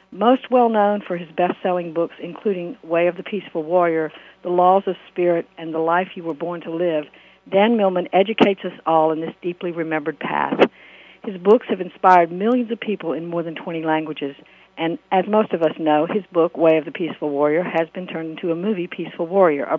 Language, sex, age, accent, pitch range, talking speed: English, female, 60-79, American, 165-200 Hz, 205 wpm